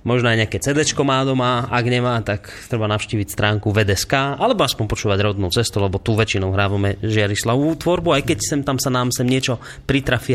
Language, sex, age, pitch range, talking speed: Slovak, male, 30-49, 110-140 Hz, 190 wpm